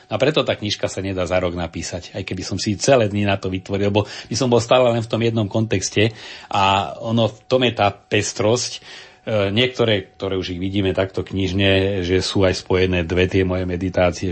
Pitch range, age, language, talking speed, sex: 90-100 Hz, 40-59, Slovak, 210 wpm, male